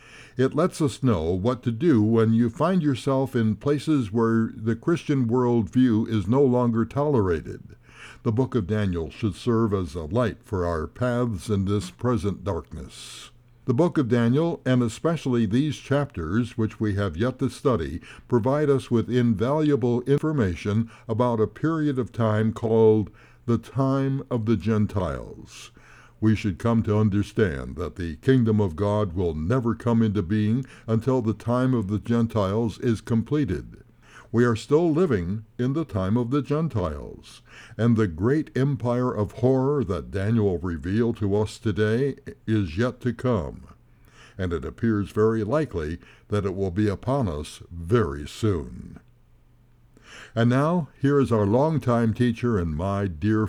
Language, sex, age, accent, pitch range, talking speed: English, male, 60-79, American, 105-125 Hz, 155 wpm